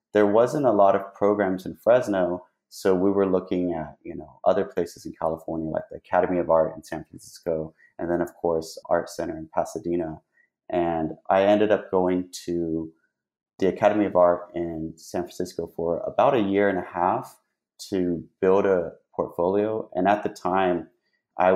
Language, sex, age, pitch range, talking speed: English, male, 30-49, 85-100 Hz, 180 wpm